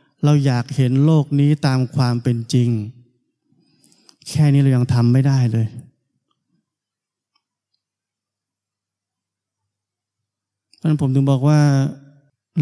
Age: 20-39